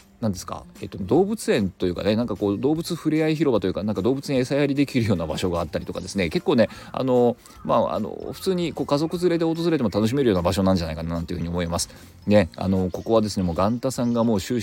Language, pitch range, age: Japanese, 90-115 Hz, 40-59